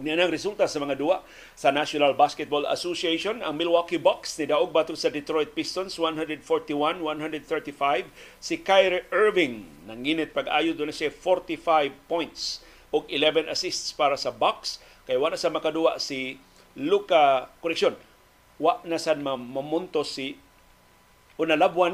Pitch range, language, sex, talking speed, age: 145-175 Hz, Filipino, male, 130 wpm, 40-59